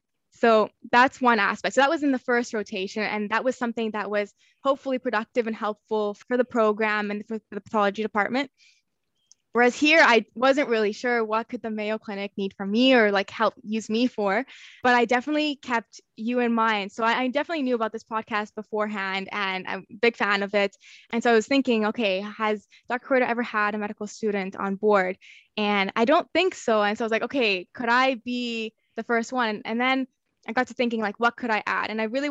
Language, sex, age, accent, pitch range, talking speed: English, female, 20-39, American, 210-240 Hz, 220 wpm